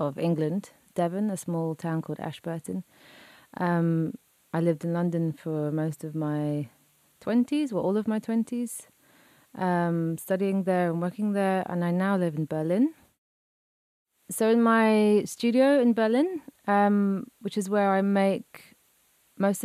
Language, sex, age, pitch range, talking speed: English, female, 30-49, 165-210 Hz, 145 wpm